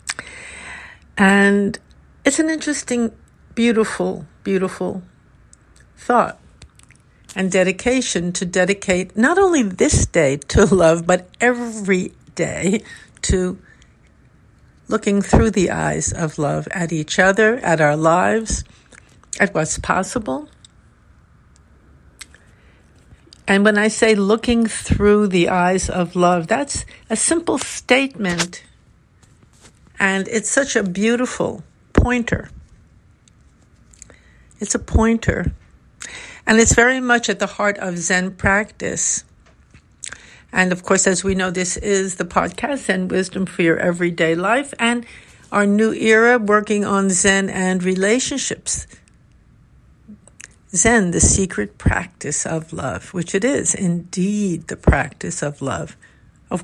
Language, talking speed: English, 115 wpm